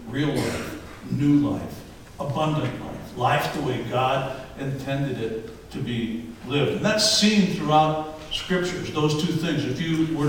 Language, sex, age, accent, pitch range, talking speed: English, male, 60-79, American, 135-165 Hz, 150 wpm